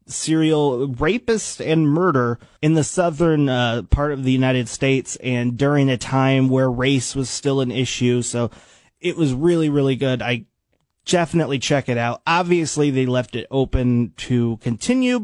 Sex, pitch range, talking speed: male, 125-160 Hz, 160 wpm